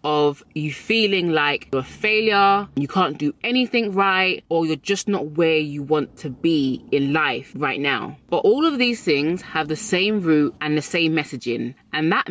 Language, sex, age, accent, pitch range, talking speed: English, female, 20-39, British, 150-195 Hz, 195 wpm